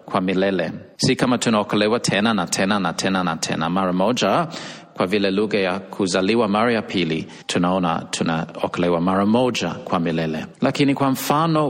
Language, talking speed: Swahili, 160 wpm